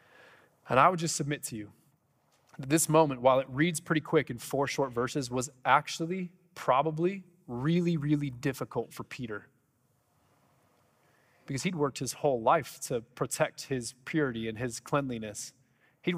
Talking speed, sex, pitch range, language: 150 wpm, male, 130-165 Hz, English